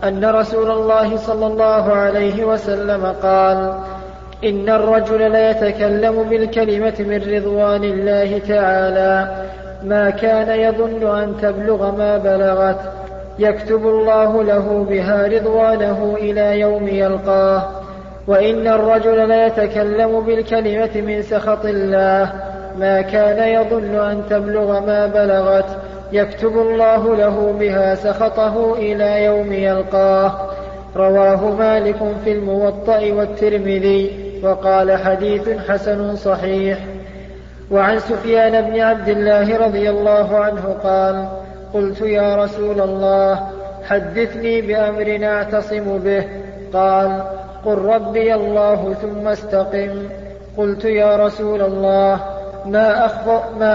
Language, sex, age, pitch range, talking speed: Arabic, male, 40-59, 195-215 Hz, 105 wpm